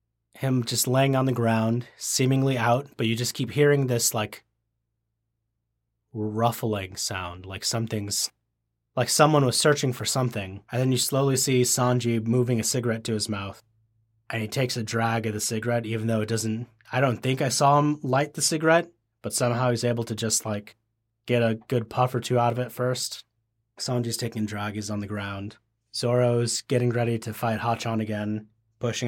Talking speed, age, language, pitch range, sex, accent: 185 wpm, 30-49, English, 110-130 Hz, male, American